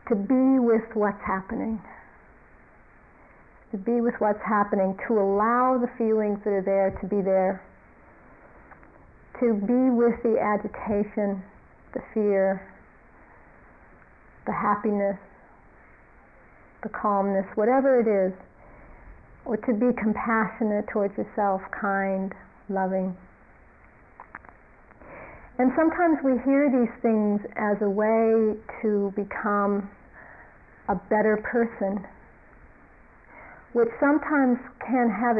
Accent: American